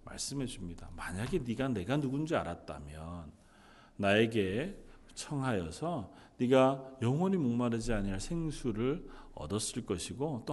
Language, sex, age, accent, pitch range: Korean, male, 40-59, native, 105-145 Hz